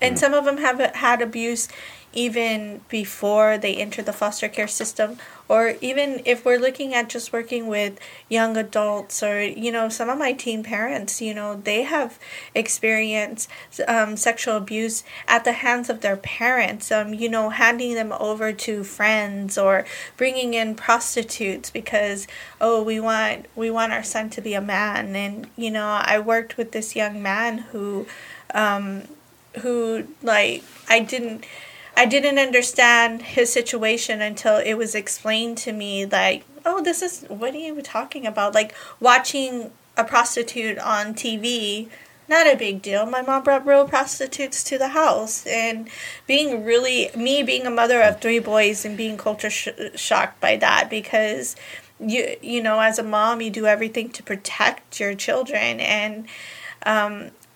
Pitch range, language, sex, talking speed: 215-245 Hz, English, female, 165 wpm